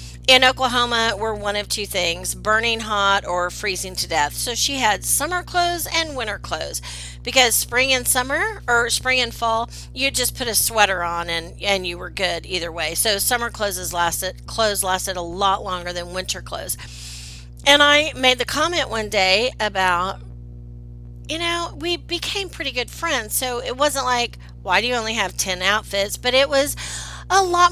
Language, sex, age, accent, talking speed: English, female, 40-59, American, 185 wpm